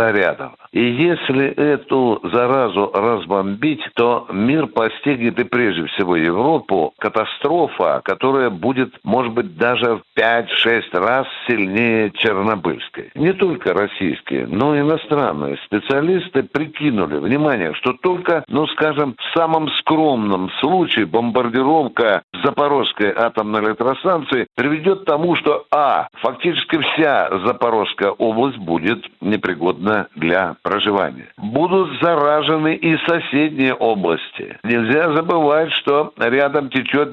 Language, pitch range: Russian, 120-150 Hz